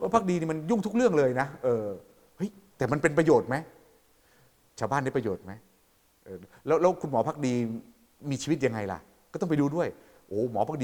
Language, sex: Thai, male